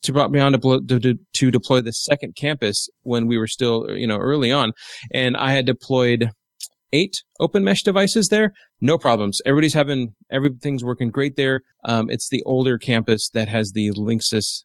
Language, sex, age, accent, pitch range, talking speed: English, male, 30-49, American, 110-135 Hz, 190 wpm